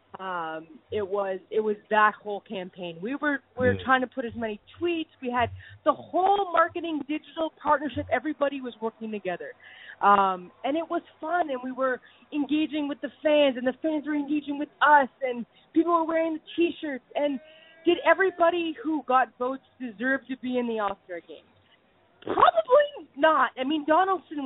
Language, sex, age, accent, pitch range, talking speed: English, female, 20-39, American, 240-325 Hz, 175 wpm